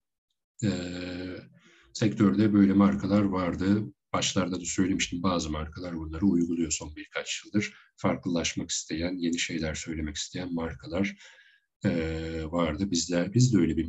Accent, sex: native, male